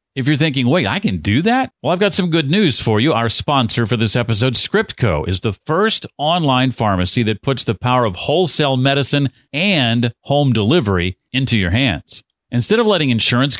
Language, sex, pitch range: English, male, 105-140 Hz